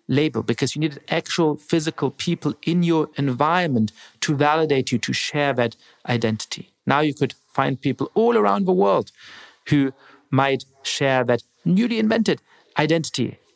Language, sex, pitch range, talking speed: English, male, 125-165 Hz, 145 wpm